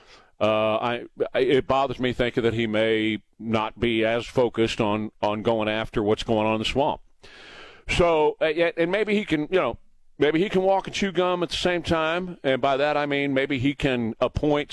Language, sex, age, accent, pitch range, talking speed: English, male, 40-59, American, 105-130 Hz, 200 wpm